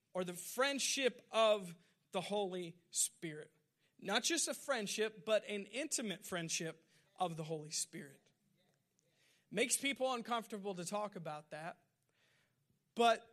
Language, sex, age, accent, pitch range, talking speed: English, male, 40-59, American, 170-225 Hz, 120 wpm